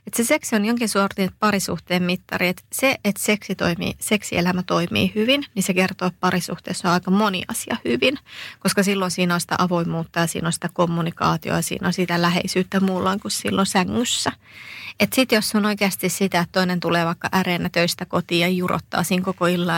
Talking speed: 180 wpm